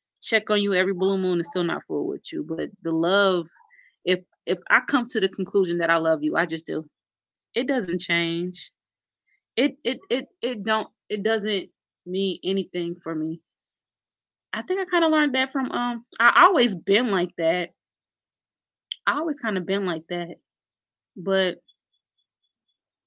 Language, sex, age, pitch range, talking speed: English, female, 20-39, 150-195 Hz, 170 wpm